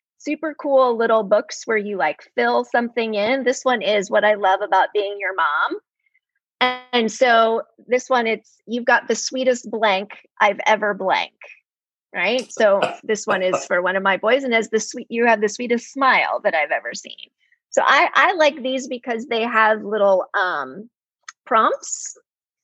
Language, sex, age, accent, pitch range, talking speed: English, female, 40-59, American, 210-255 Hz, 180 wpm